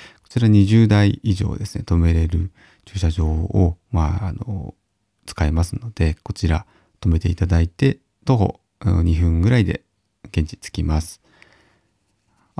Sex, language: male, Japanese